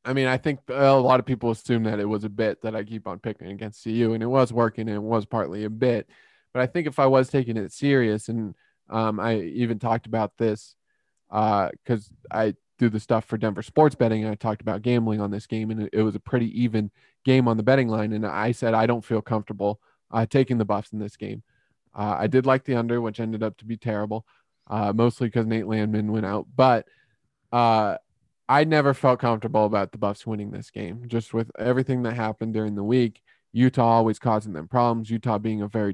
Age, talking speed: 20-39, 230 wpm